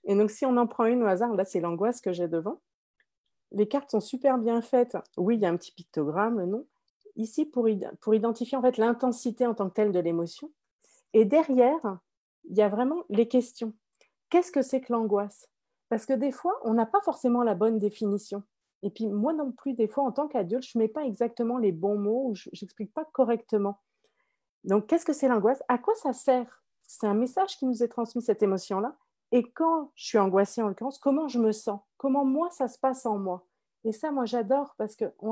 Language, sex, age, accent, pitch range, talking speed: French, female, 40-59, French, 210-260 Hz, 225 wpm